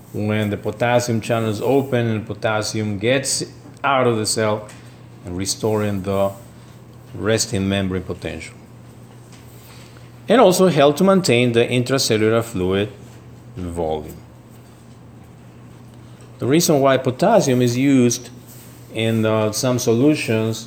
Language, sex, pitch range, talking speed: English, male, 100-120 Hz, 105 wpm